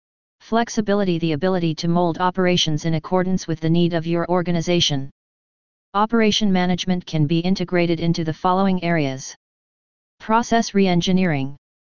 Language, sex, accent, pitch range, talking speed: English, female, American, 165-195 Hz, 125 wpm